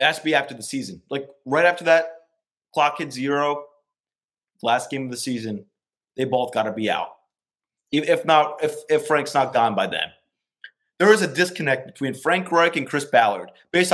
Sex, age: male, 30-49